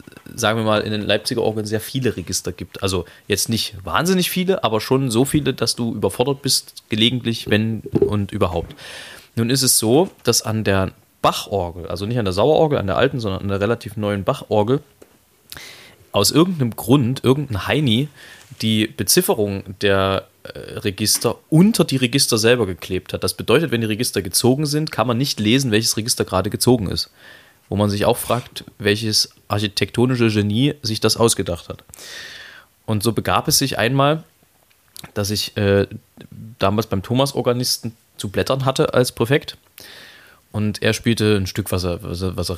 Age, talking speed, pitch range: 20-39, 165 wpm, 100-125 Hz